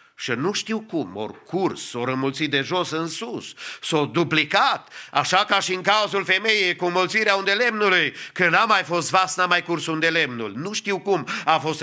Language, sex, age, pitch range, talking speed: English, male, 50-69, 145-200 Hz, 205 wpm